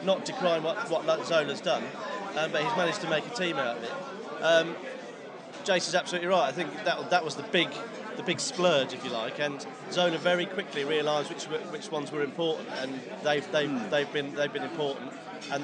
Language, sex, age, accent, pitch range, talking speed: English, male, 40-59, British, 155-195 Hz, 210 wpm